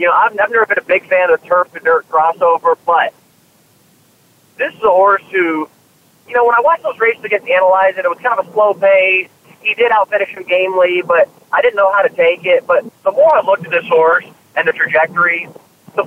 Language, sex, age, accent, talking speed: English, male, 30-49, American, 220 wpm